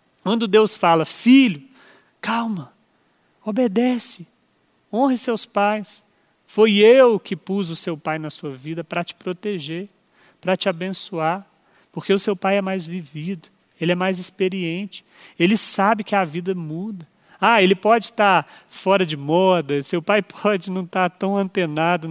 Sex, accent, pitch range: male, Brazilian, 175-210 Hz